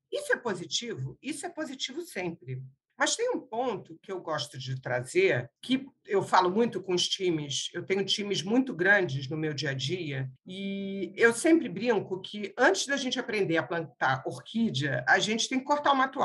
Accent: Brazilian